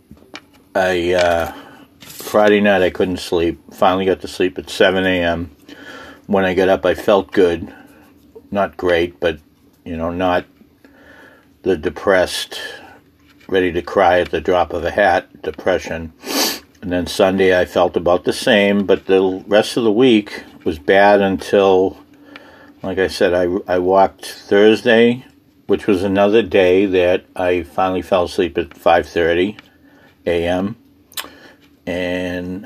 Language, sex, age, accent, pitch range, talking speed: English, male, 60-79, American, 90-100 Hz, 140 wpm